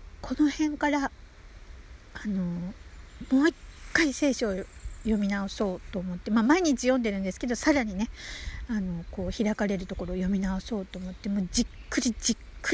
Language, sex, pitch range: Japanese, female, 195-285 Hz